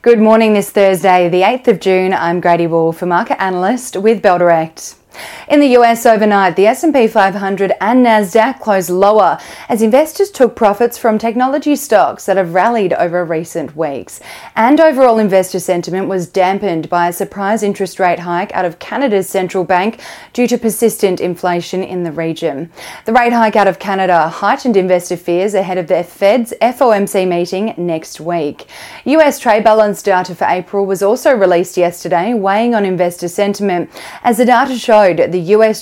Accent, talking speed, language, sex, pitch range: Australian, 170 wpm, English, female, 175-220 Hz